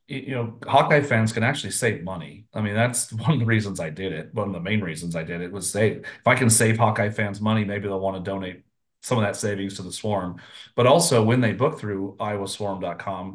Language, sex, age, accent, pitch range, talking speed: English, male, 30-49, American, 100-115 Hz, 245 wpm